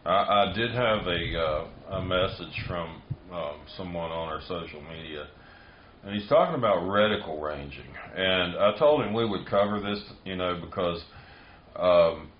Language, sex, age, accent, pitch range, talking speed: English, male, 40-59, American, 80-105 Hz, 160 wpm